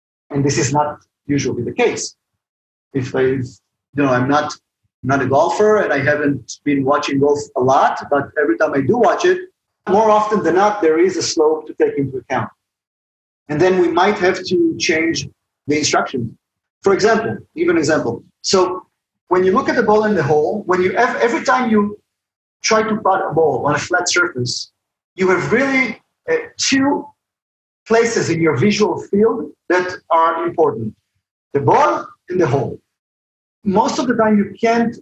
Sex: male